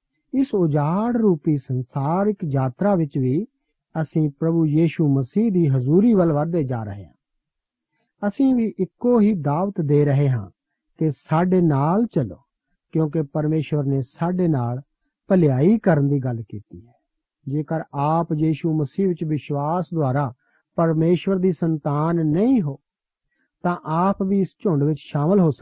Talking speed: 130 wpm